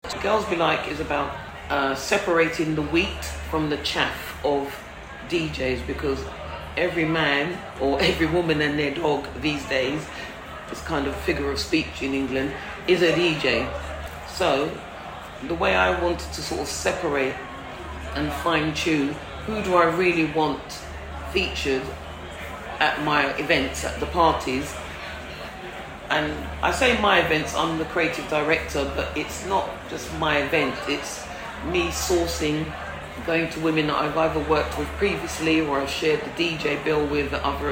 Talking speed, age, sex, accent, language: 150 wpm, 40-59, female, British, English